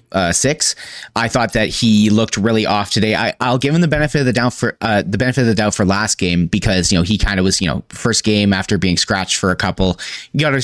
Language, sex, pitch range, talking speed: English, male, 100-125 Hz, 265 wpm